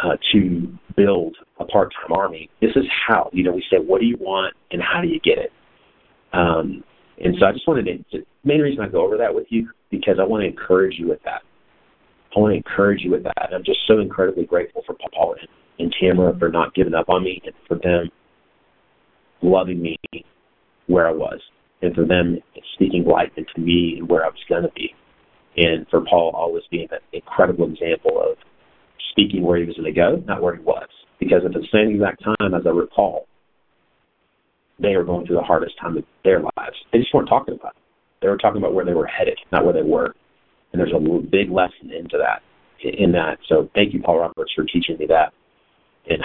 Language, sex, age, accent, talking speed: English, male, 40-59, American, 215 wpm